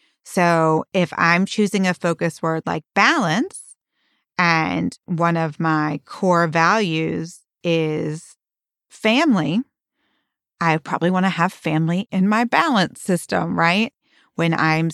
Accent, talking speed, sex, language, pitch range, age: American, 115 wpm, female, English, 160-190 Hz, 30-49